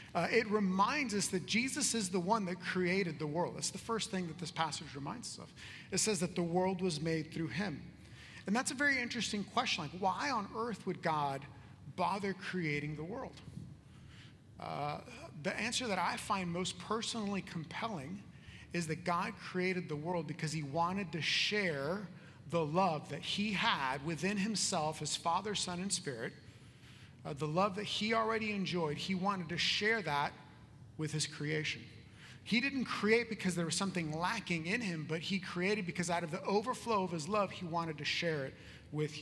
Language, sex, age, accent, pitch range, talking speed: English, male, 40-59, American, 155-200 Hz, 185 wpm